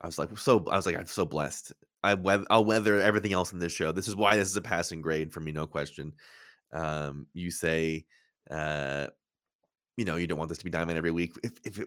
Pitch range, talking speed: 85-105 Hz, 240 wpm